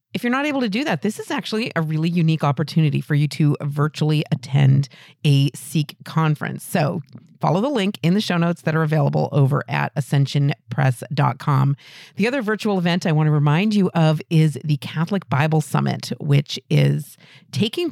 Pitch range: 150-190 Hz